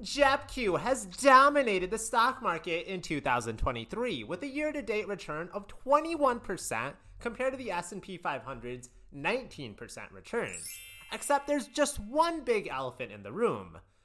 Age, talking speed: 30-49, 130 wpm